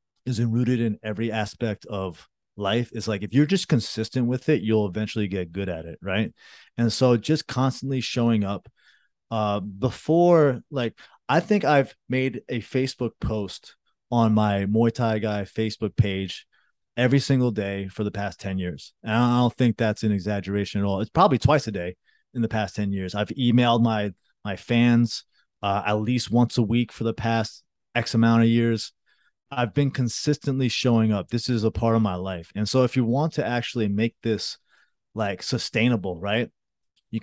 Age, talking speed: 30-49, 185 wpm